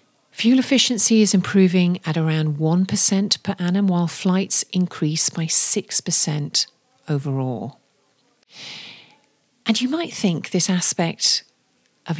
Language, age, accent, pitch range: English, 40-59, British, 155-195 Hz